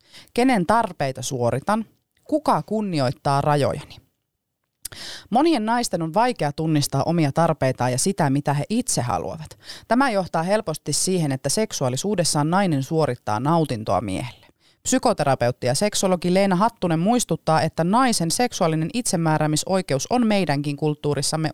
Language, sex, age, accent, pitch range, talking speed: Finnish, female, 30-49, native, 140-190 Hz, 115 wpm